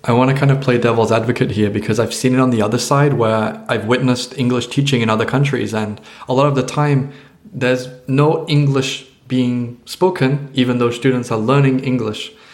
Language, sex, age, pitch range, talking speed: English, male, 20-39, 110-135 Hz, 200 wpm